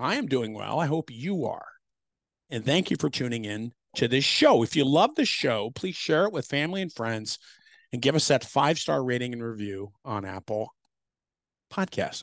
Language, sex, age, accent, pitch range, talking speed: English, male, 50-69, American, 110-150 Hz, 200 wpm